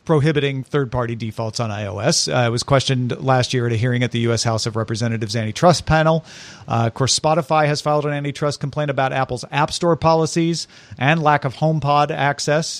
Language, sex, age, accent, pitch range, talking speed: English, male, 40-59, American, 125-170 Hz, 190 wpm